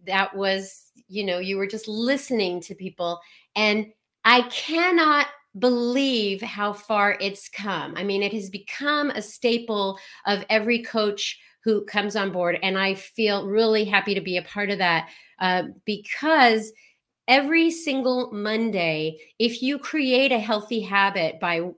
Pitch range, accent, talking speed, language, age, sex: 195-235 Hz, American, 150 wpm, English, 40-59, female